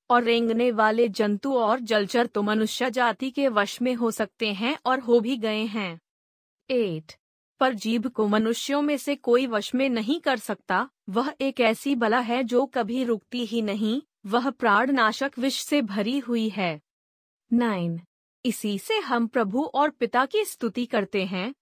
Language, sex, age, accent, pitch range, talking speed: Hindi, female, 30-49, native, 215-250 Hz, 170 wpm